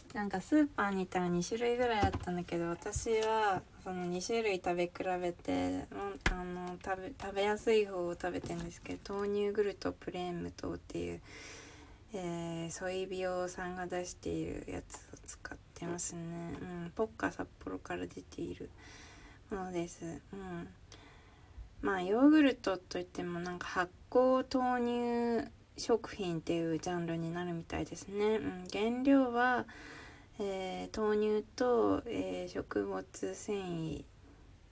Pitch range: 165-215 Hz